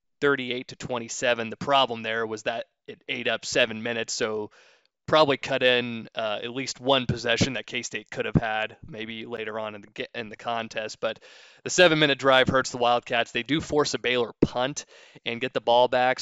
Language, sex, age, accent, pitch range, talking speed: English, male, 20-39, American, 115-140 Hz, 195 wpm